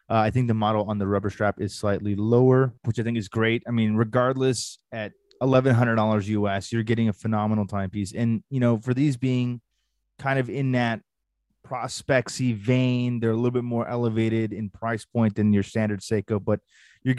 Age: 20-39